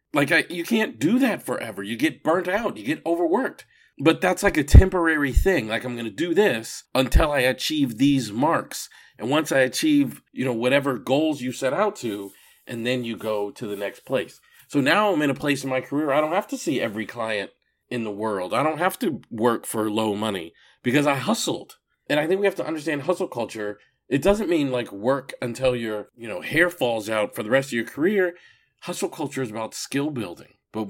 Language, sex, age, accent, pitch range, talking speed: English, male, 40-59, American, 110-160 Hz, 225 wpm